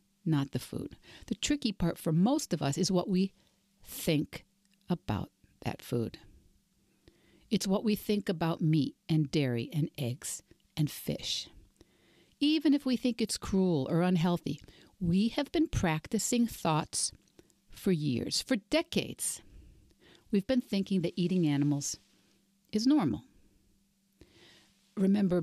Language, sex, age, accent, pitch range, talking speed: English, female, 60-79, American, 155-205 Hz, 130 wpm